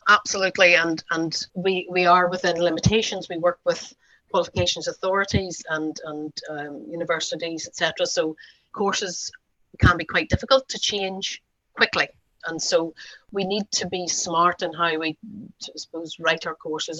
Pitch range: 160-185 Hz